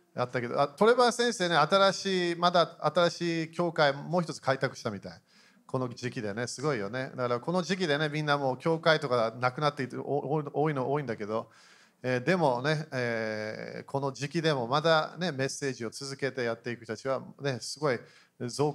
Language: Japanese